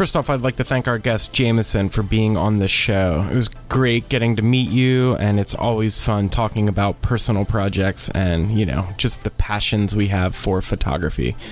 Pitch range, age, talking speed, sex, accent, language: 105-130 Hz, 20-39, 205 wpm, male, American, English